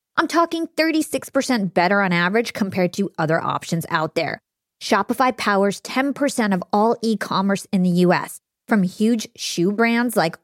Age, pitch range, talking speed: 20-39, 190-265 Hz, 150 wpm